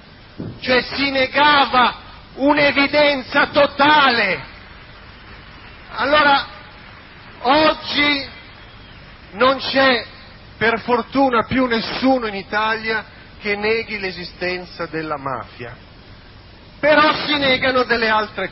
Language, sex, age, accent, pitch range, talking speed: Italian, male, 40-59, native, 175-250 Hz, 80 wpm